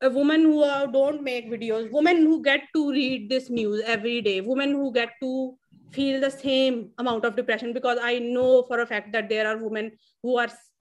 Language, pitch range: English, 235-285 Hz